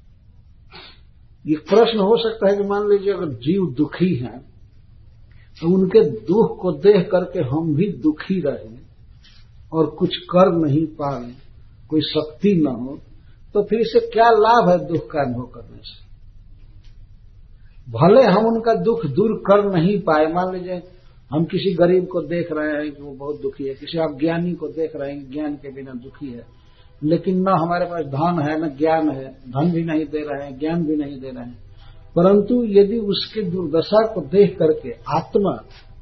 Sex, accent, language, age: male, native, Hindi, 60-79